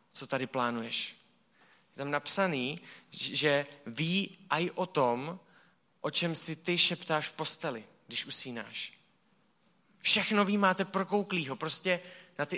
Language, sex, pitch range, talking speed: Czech, male, 150-195 Hz, 135 wpm